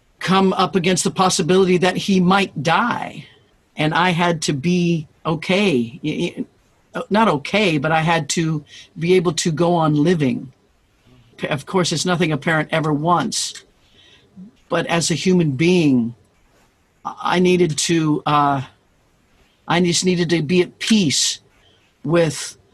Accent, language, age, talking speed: American, English, 50-69, 135 wpm